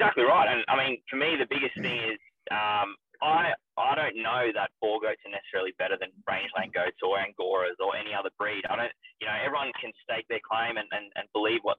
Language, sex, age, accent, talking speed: English, male, 20-39, Australian, 230 wpm